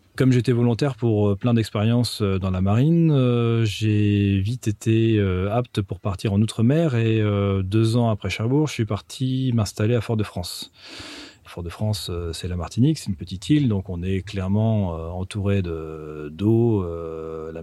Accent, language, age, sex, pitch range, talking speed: French, French, 40-59, male, 95-115 Hz, 155 wpm